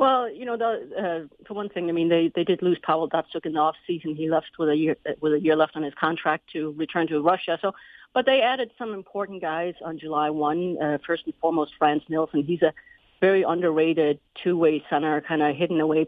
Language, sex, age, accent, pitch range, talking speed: English, female, 40-59, American, 150-175 Hz, 235 wpm